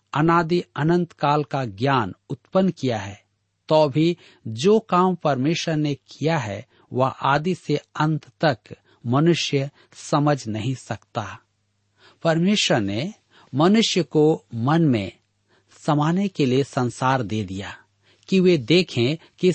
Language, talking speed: Hindi, 125 wpm